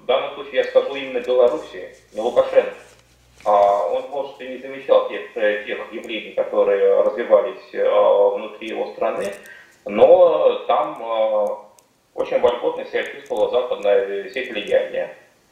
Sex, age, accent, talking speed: male, 20-39, native, 115 wpm